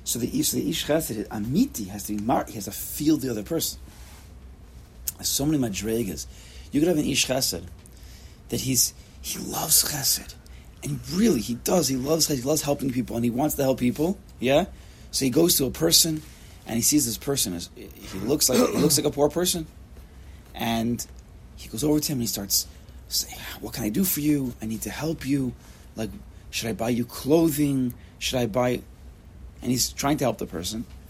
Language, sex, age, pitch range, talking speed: English, male, 30-49, 100-140 Hz, 210 wpm